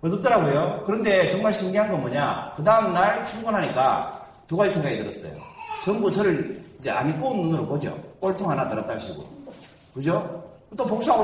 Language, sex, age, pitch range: Korean, male, 40-59, 160-220 Hz